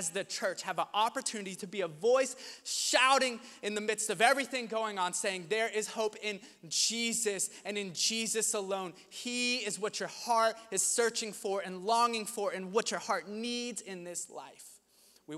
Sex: male